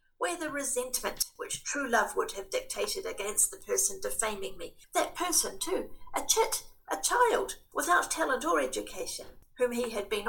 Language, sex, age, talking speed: English, female, 50-69, 170 wpm